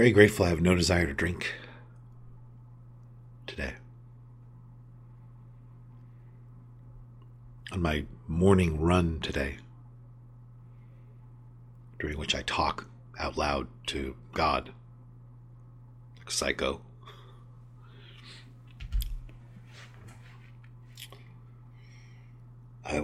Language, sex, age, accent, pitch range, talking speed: English, male, 60-79, American, 100-120 Hz, 70 wpm